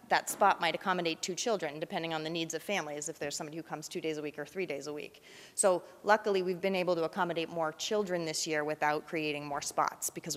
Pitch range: 160-190 Hz